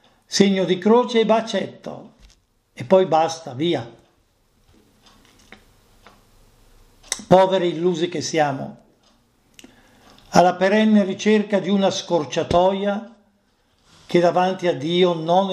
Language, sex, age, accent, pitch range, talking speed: Italian, male, 50-69, native, 120-200 Hz, 95 wpm